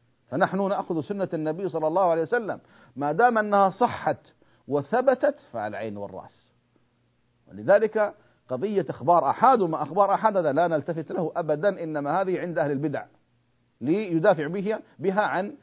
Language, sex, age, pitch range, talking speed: Arabic, male, 40-59, 145-205 Hz, 140 wpm